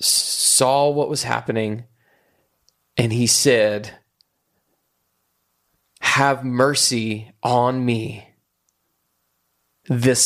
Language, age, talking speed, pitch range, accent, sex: English, 20-39, 70 wpm, 115-160 Hz, American, male